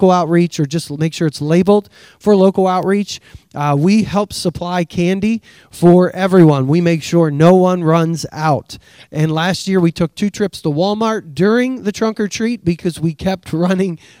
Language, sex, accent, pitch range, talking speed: English, male, American, 160-195 Hz, 175 wpm